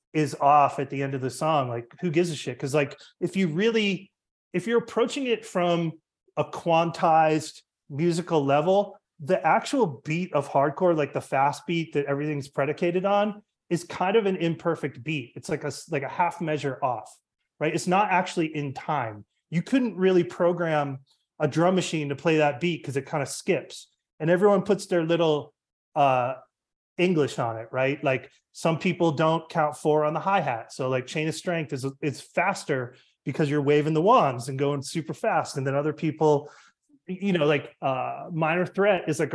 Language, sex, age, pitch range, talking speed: English, male, 30-49, 145-180 Hz, 190 wpm